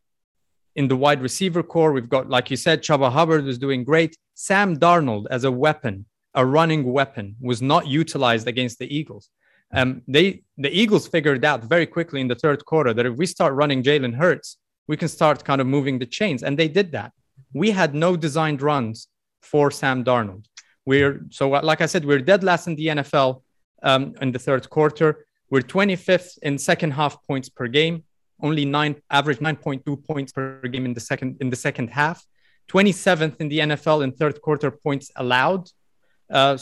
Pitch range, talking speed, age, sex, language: 130-160 Hz, 190 wpm, 30-49, male, English